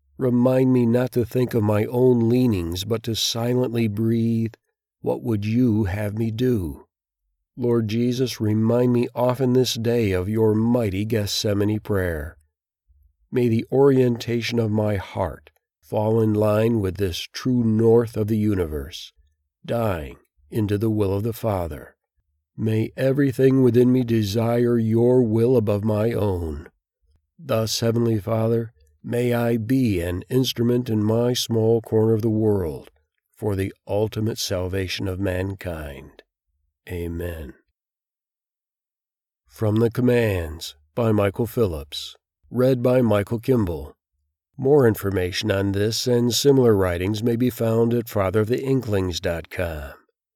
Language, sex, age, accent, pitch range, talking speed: English, male, 50-69, American, 95-120 Hz, 130 wpm